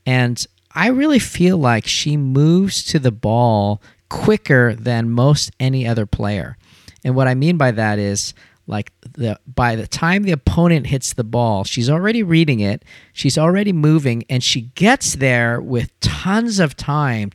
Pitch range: 115-155 Hz